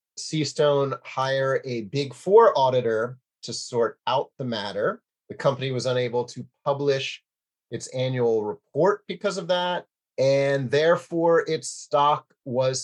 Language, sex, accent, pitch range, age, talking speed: English, male, American, 125-190 Hz, 30-49, 130 wpm